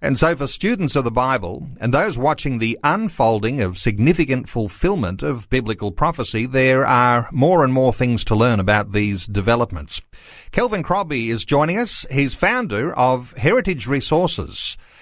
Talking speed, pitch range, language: 155 wpm, 115-150 Hz, English